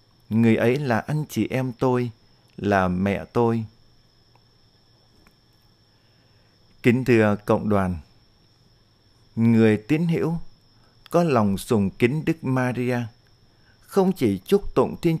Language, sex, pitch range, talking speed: Vietnamese, male, 110-135 Hz, 110 wpm